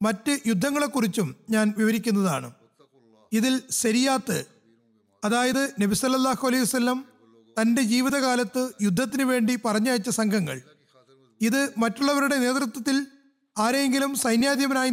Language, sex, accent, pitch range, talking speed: Malayalam, male, native, 215-265 Hz, 80 wpm